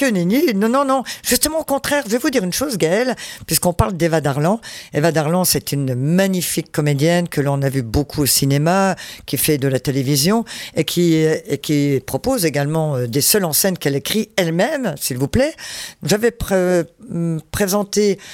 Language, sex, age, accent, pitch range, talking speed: French, female, 50-69, French, 155-205 Hz, 180 wpm